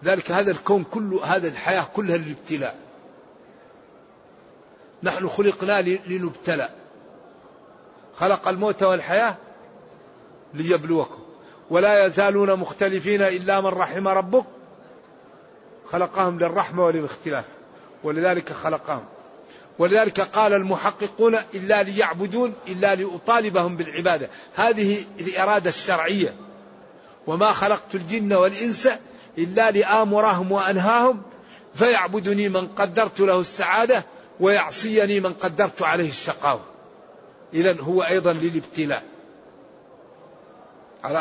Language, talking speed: Arabic, 85 wpm